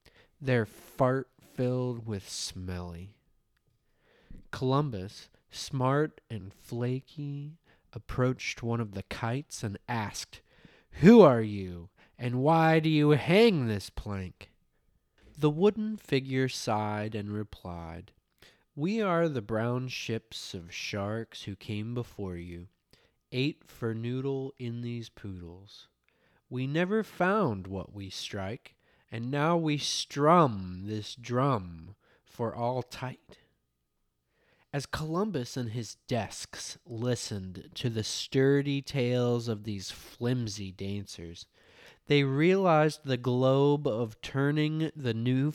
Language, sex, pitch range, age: English, male, 100-140 Hz, 20-39